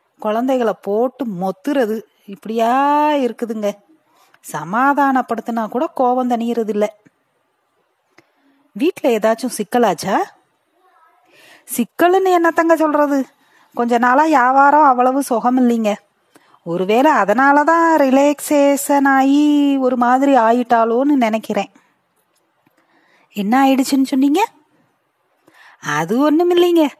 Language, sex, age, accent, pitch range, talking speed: Tamil, female, 30-49, native, 240-315 Hz, 80 wpm